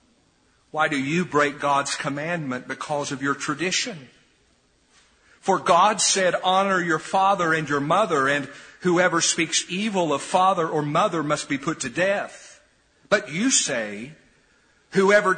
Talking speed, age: 140 wpm, 50-69